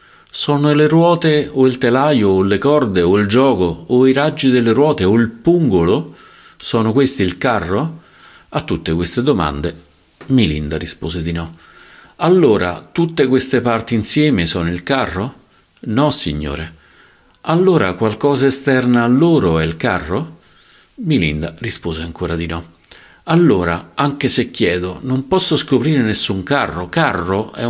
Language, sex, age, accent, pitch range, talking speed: Italian, male, 50-69, native, 85-135 Hz, 145 wpm